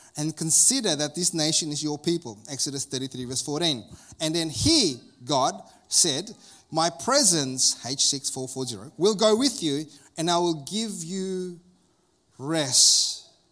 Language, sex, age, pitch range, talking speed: English, male, 30-49, 145-175 Hz, 135 wpm